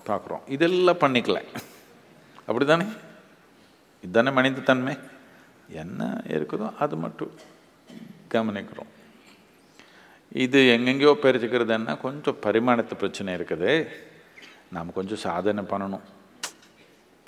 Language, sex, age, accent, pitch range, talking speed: Tamil, male, 50-69, native, 110-145 Hz, 80 wpm